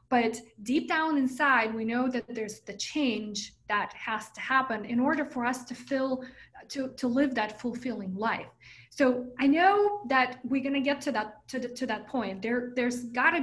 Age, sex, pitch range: 20-39, female, 225-270 Hz